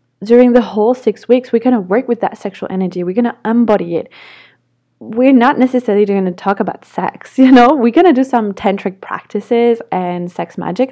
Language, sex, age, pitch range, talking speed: English, female, 20-39, 195-235 Hz, 210 wpm